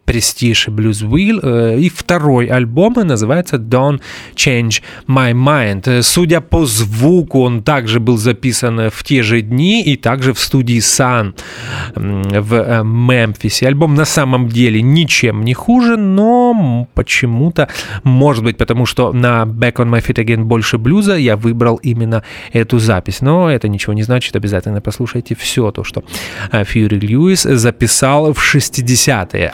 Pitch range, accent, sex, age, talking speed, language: 115-145 Hz, native, male, 30-49, 140 wpm, Russian